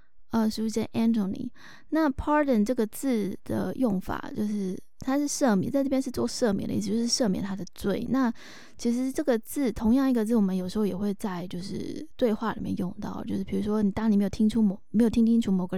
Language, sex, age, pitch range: Chinese, female, 20-39, 195-245 Hz